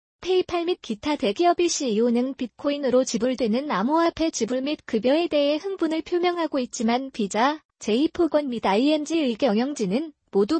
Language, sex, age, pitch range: Korean, female, 20-39, 245-330 Hz